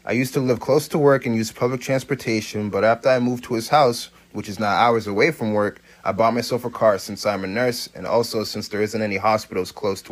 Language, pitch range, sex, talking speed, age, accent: English, 105-130 Hz, male, 255 wpm, 30-49, American